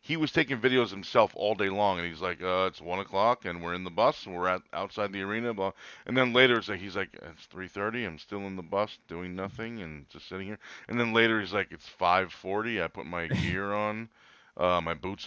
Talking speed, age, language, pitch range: 230 wpm, 40-59, English, 95-115 Hz